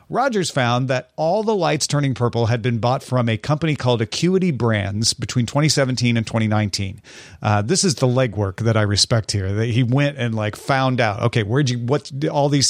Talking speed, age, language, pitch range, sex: 205 wpm, 40-59, English, 115-150 Hz, male